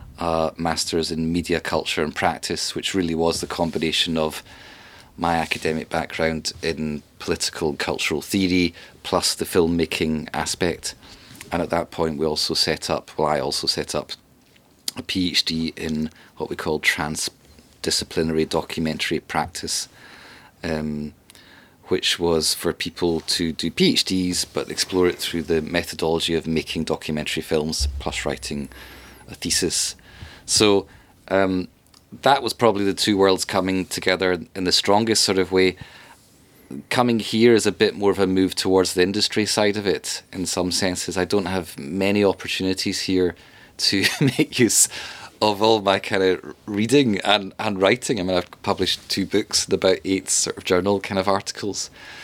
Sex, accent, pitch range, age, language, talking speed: male, British, 80-100 Hz, 30-49, English, 155 wpm